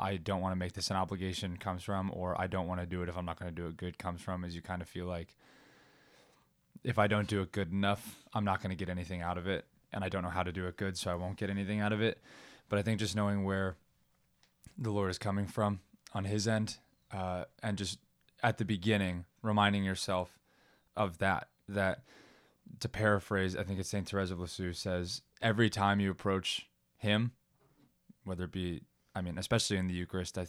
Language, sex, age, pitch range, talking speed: English, male, 20-39, 90-105 Hz, 230 wpm